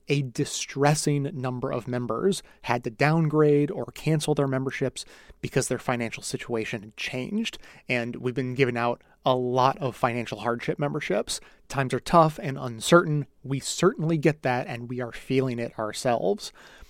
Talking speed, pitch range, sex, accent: 155 wpm, 125-150 Hz, male, American